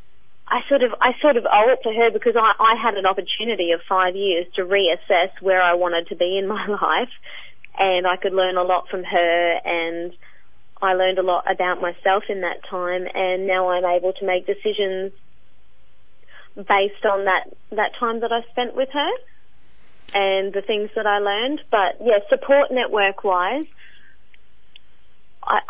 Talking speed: 175 wpm